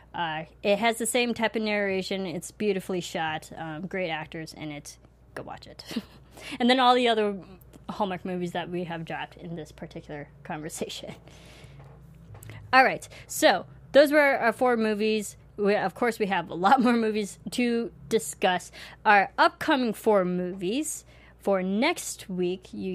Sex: female